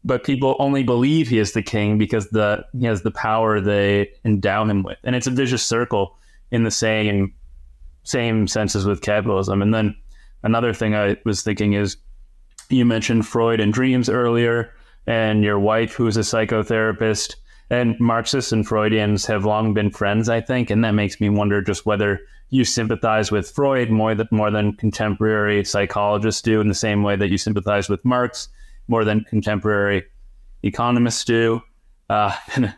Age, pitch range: 20-39, 105-125 Hz